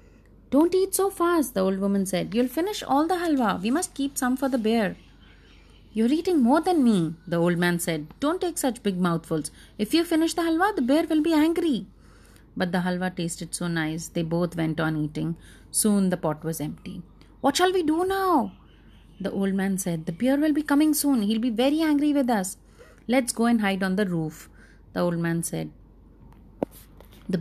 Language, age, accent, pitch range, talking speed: English, 30-49, Indian, 170-275 Hz, 205 wpm